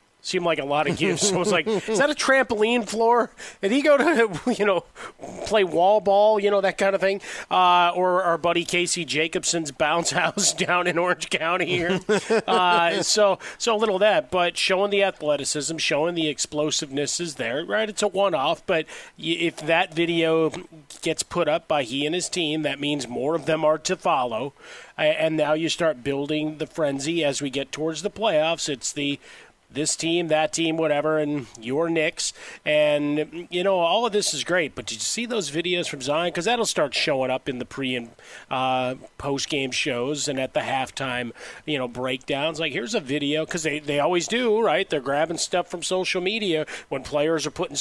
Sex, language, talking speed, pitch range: male, English, 200 wpm, 150-185 Hz